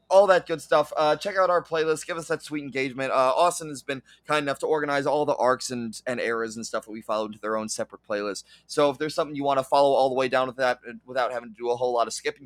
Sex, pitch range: male, 125-170 Hz